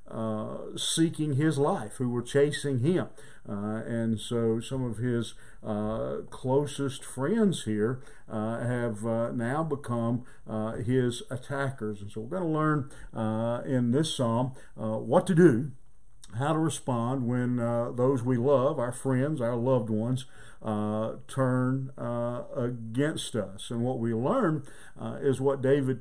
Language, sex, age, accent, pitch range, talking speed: English, male, 50-69, American, 115-140 Hz, 150 wpm